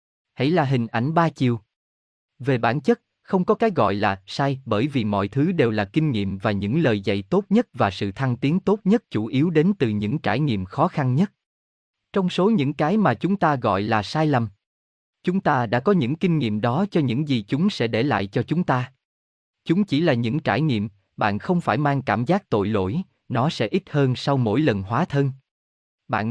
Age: 20-39